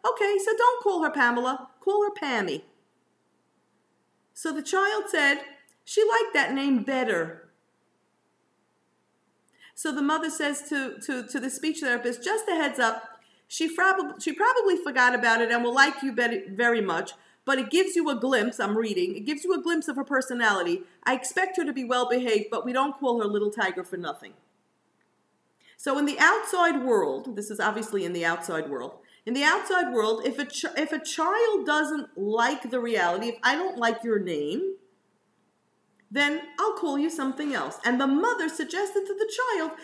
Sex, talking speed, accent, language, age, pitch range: female, 180 wpm, American, English, 40-59, 230-320 Hz